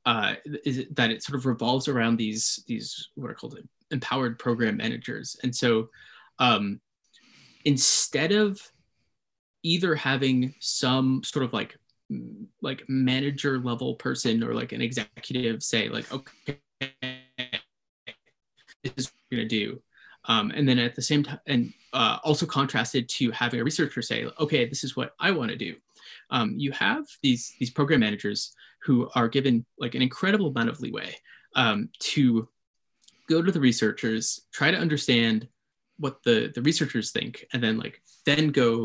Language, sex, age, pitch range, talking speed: English, male, 20-39, 115-140 Hz, 160 wpm